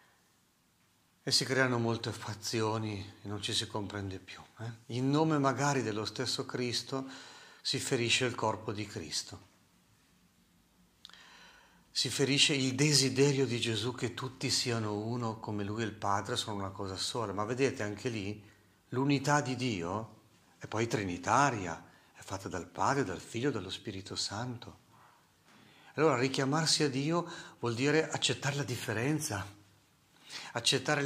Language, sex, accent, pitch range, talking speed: Italian, male, native, 105-145 Hz, 140 wpm